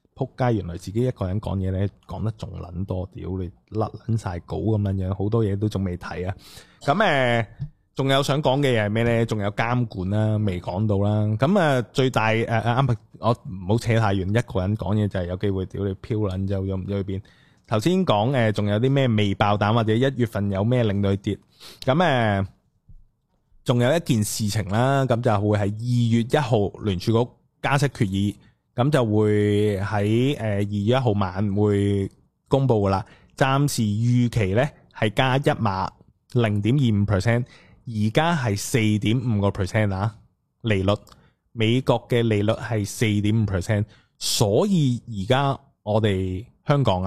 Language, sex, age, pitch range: Chinese, male, 20-39, 100-125 Hz